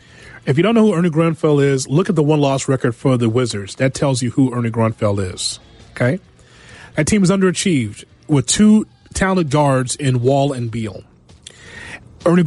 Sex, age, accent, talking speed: male, 30-49, American, 180 wpm